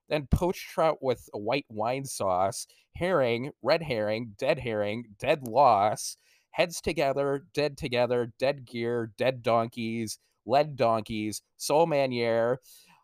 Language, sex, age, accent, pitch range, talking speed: English, male, 30-49, American, 110-140 Hz, 125 wpm